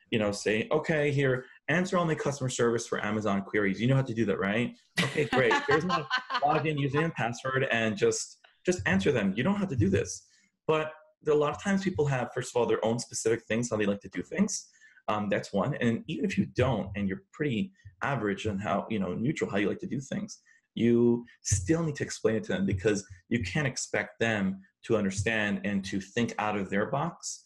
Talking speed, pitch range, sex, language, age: 225 wpm, 105-150 Hz, male, English, 30-49